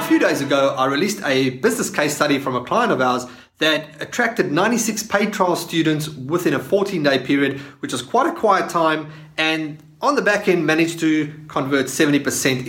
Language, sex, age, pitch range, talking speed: English, male, 30-49, 145-200 Hz, 190 wpm